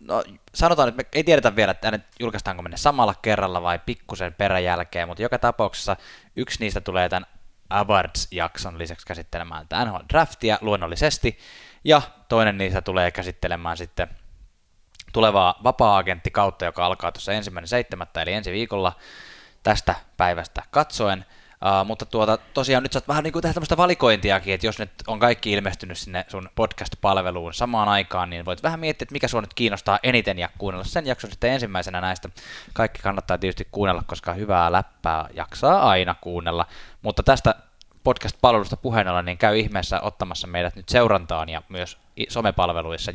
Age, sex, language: 20-39, male, Finnish